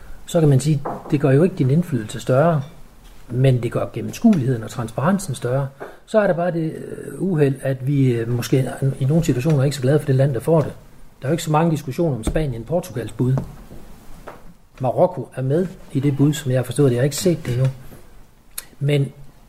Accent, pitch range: native, 130-170 Hz